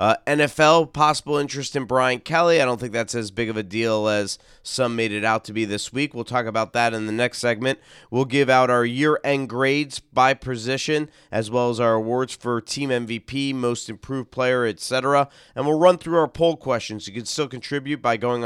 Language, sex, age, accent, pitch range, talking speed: English, male, 30-49, American, 115-140 Hz, 215 wpm